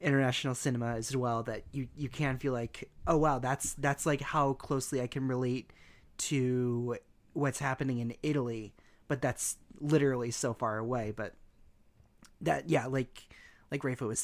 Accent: American